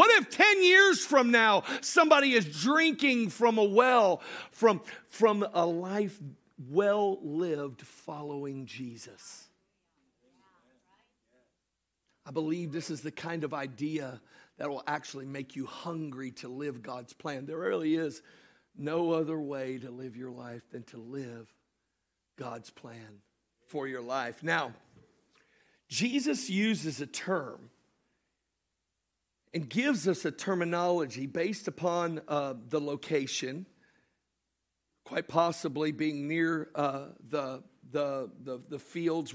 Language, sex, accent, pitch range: English, male, American, 135-185 Hz